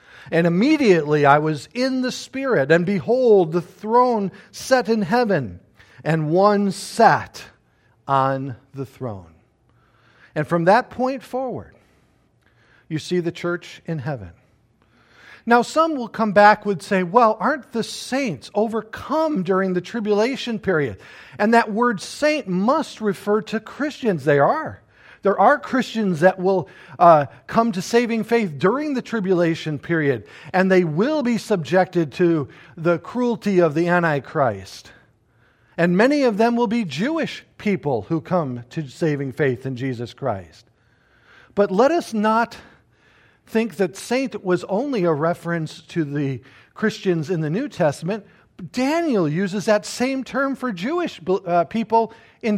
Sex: male